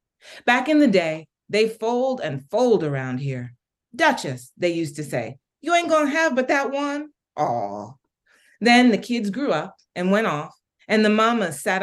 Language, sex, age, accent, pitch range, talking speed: English, female, 30-49, American, 150-215 Hz, 180 wpm